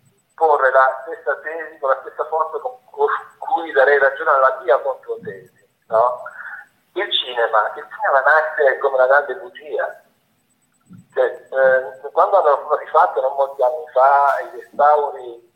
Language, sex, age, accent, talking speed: Italian, male, 50-69, native, 145 wpm